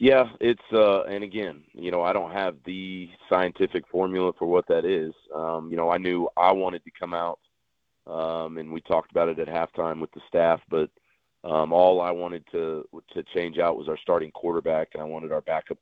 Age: 40-59